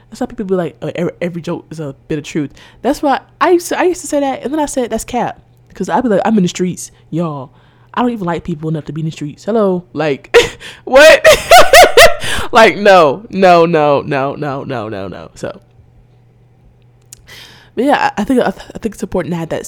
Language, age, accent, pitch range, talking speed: English, 20-39, American, 125-195 Hz, 215 wpm